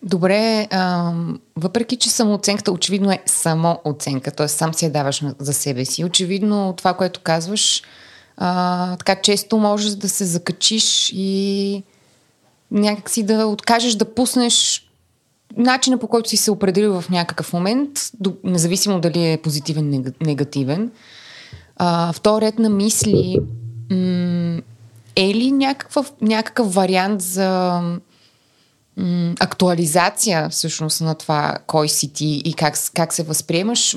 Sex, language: female, Bulgarian